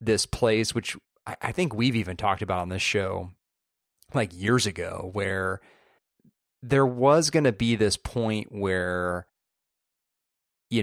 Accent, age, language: American, 30-49, English